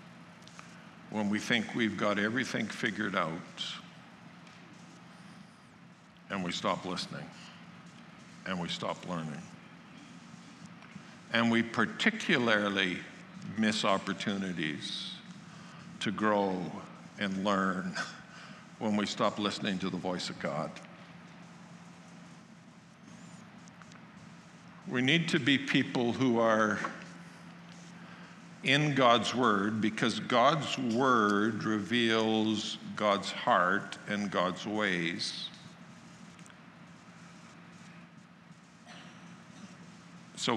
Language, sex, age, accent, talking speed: English, male, 60-79, American, 80 wpm